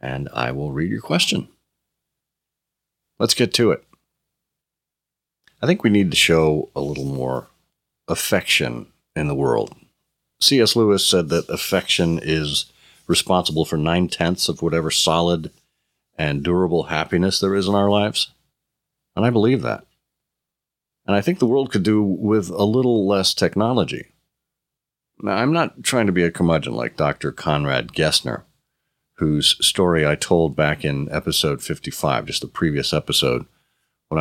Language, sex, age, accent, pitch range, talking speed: English, male, 50-69, American, 75-100 Hz, 145 wpm